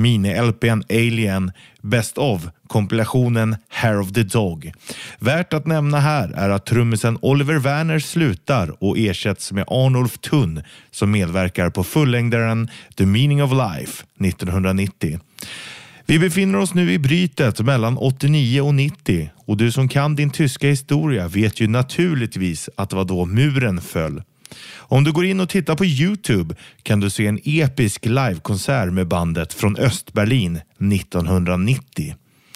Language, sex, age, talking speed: Swedish, male, 30-49, 145 wpm